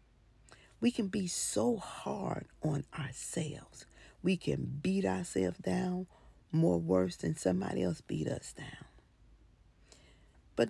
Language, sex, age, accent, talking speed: English, female, 50-69, American, 120 wpm